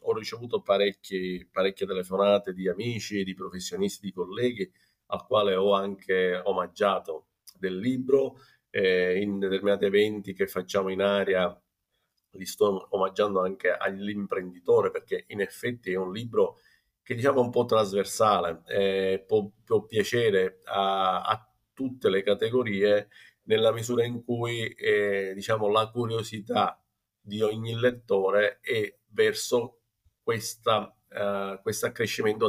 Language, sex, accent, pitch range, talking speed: Italian, male, native, 100-125 Hz, 125 wpm